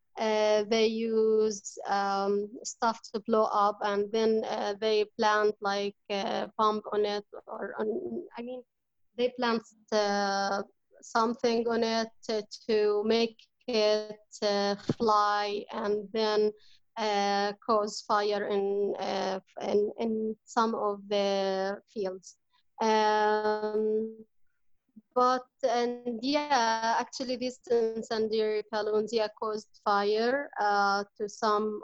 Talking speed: 105 wpm